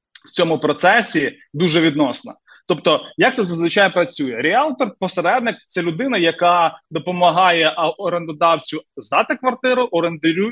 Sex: male